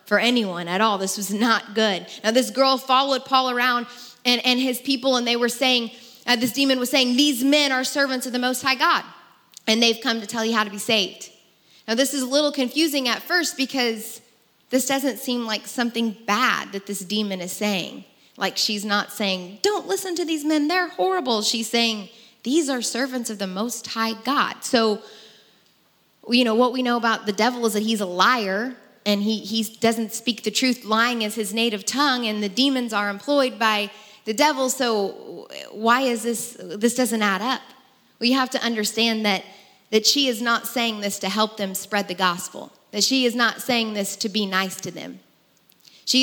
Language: English